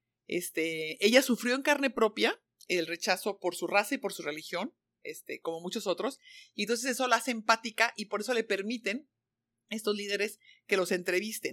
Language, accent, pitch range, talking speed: English, Mexican, 170-225 Hz, 185 wpm